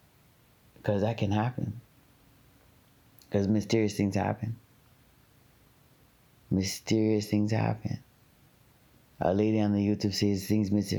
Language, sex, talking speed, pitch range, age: English, male, 105 wpm, 95-125 Hz, 30-49